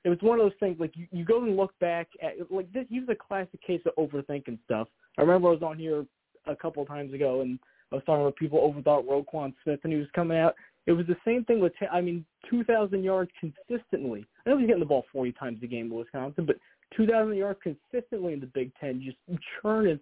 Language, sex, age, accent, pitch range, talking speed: English, male, 20-39, American, 145-185 Hz, 245 wpm